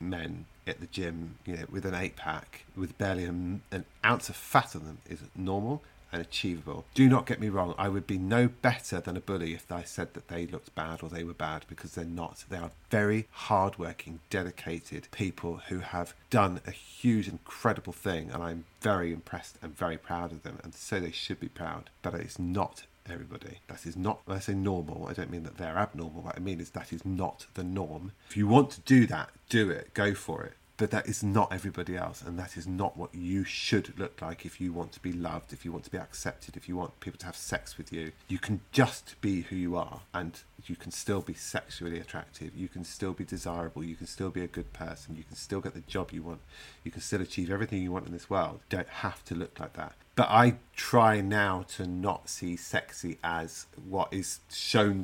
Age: 40-59